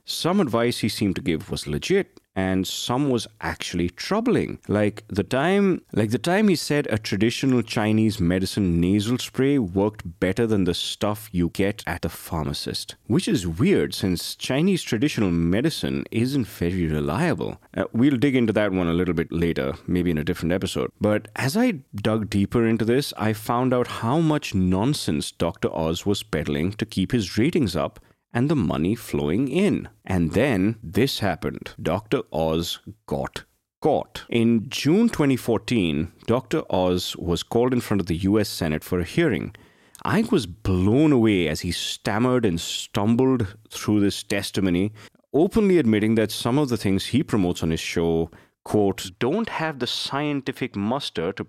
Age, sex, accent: 30-49, male, Indian